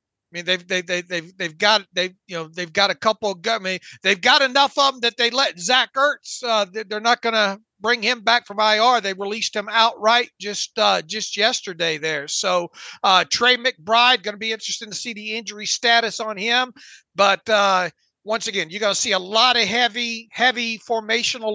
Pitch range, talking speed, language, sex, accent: 200-240 Hz, 205 wpm, English, male, American